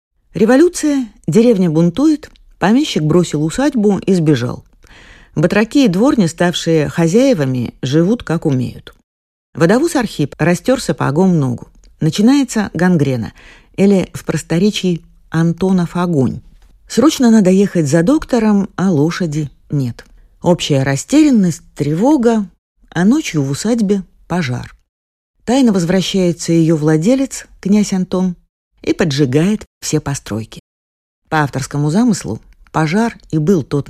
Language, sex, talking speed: Russian, female, 110 wpm